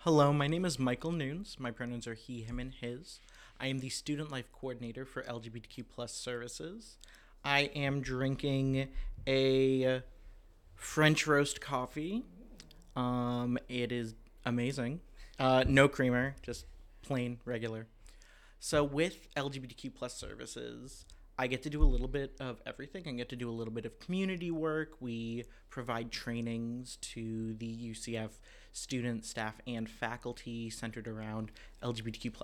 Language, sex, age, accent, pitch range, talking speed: English, male, 30-49, American, 115-130 Hz, 140 wpm